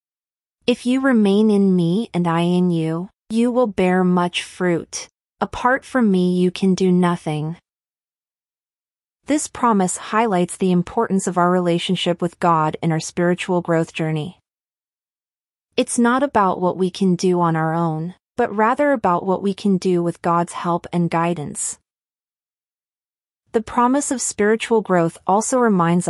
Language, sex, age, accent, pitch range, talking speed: English, female, 30-49, American, 170-215 Hz, 150 wpm